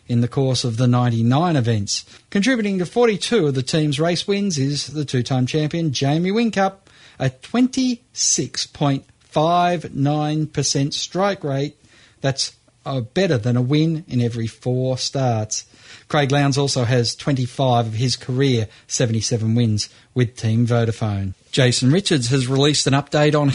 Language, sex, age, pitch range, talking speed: English, male, 40-59, 125-165 Hz, 140 wpm